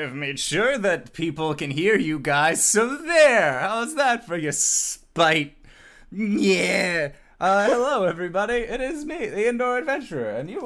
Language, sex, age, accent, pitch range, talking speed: English, male, 20-39, American, 140-220 Hz, 150 wpm